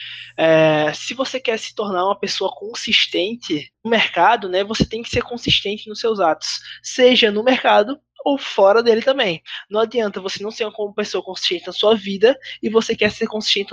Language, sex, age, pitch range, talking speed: Portuguese, male, 20-39, 195-240 Hz, 185 wpm